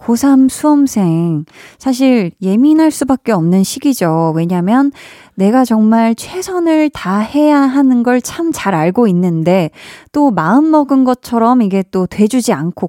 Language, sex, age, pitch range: Korean, female, 20-39, 185-270 Hz